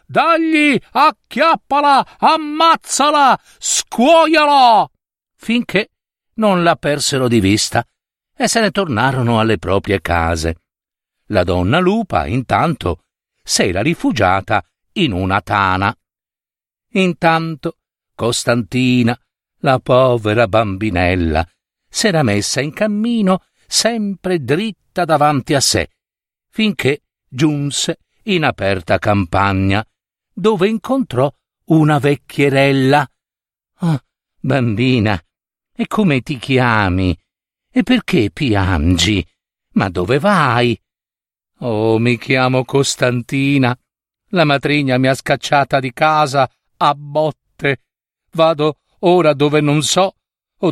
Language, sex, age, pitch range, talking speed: Italian, male, 60-79, 110-185 Hz, 95 wpm